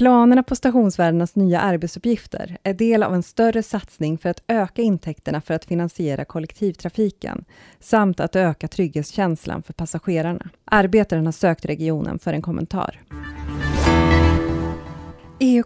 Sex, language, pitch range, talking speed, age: female, Swedish, 165-215 Hz, 125 wpm, 20-39